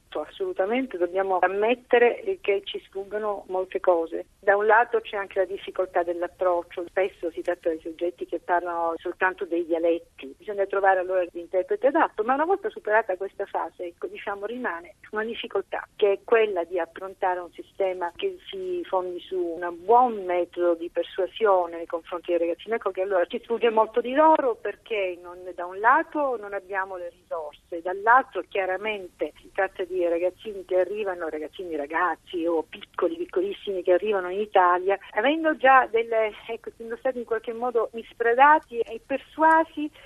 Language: Italian